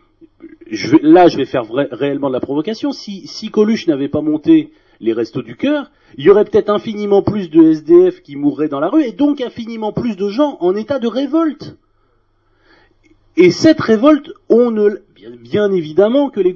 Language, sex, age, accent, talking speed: French, male, 40-59, French, 180 wpm